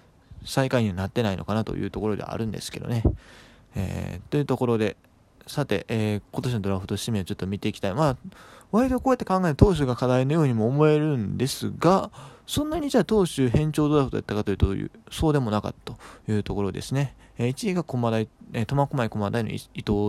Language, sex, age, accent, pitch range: Japanese, male, 20-39, native, 105-140 Hz